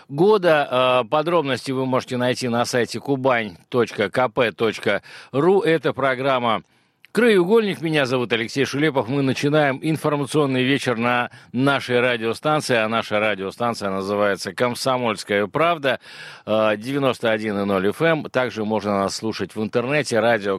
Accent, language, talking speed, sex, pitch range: native, Russian, 110 wpm, male, 110-140 Hz